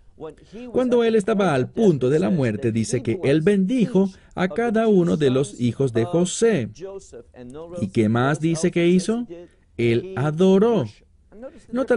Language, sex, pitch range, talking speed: English, male, 115-190 Hz, 145 wpm